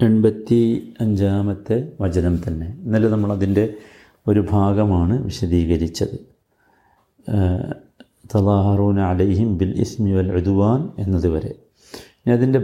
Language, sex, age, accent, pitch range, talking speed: Malayalam, male, 50-69, native, 100-140 Hz, 75 wpm